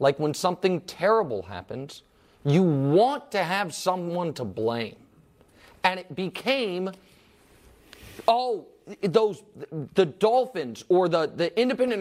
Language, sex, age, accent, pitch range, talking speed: English, male, 30-49, American, 150-215 Hz, 115 wpm